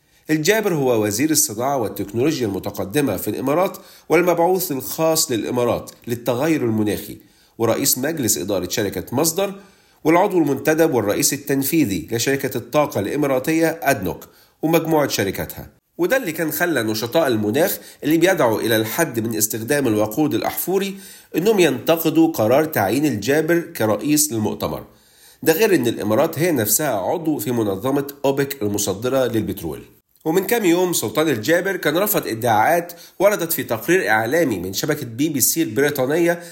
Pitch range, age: 115-160 Hz, 50-69